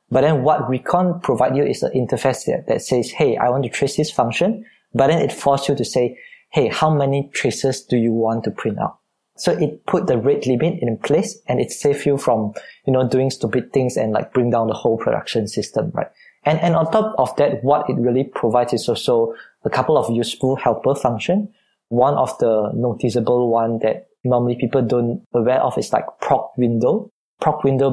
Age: 20-39